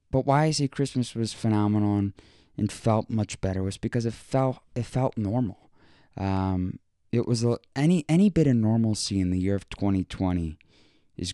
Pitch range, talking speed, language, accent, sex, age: 95-115 Hz, 185 wpm, English, American, male, 20-39